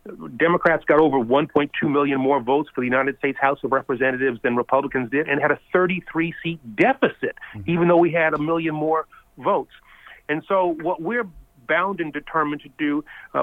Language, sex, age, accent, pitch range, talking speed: English, male, 40-59, American, 135-155 Hz, 185 wpm